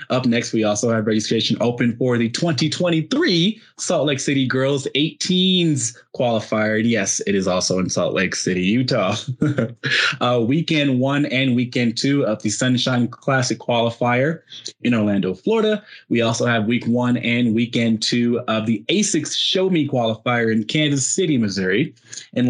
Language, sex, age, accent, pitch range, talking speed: English, male, 20-39, American, 110-130 Hz, 155 wpm